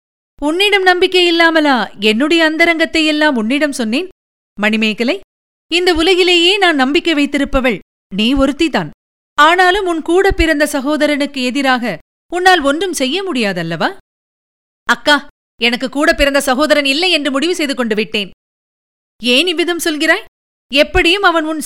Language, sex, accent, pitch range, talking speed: Tamil, female, native, 255-330 Hz, 115 wpm